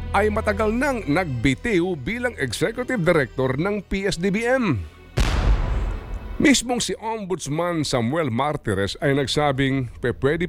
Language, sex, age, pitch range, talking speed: Filipino, male, 50-69, 115-190 Hz, 95 wpm